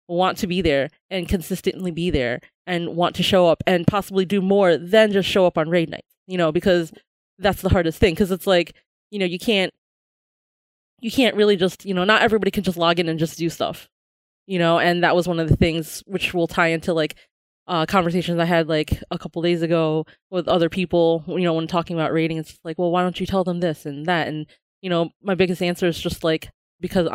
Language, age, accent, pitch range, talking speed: English, 20-39, American, 165-185 Hz, 235 wpm